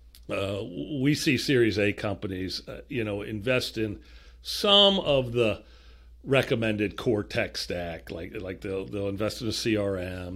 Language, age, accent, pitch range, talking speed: English, 60-79, American, 90-120 Hz, 150 wpm